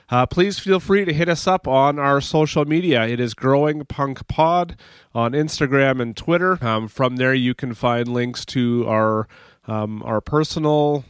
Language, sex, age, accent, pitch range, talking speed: English, male, 30-49, American, 120-150 Hz, 180 wpm